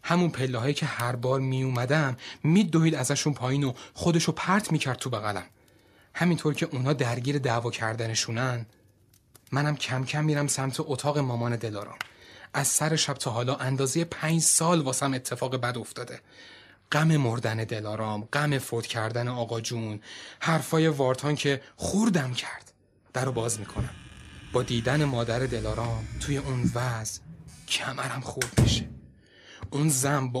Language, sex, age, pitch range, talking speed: Persian, male, 30-49, 115-150 Hz, 140 wpm